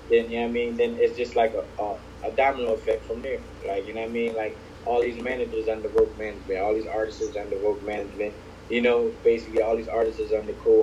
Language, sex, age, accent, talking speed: English, male, 20-39, American, 245 wpm